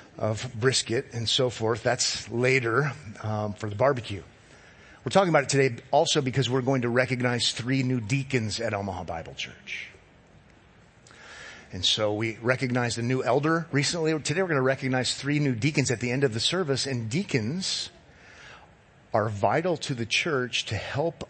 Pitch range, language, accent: 120-150 Hz, English, American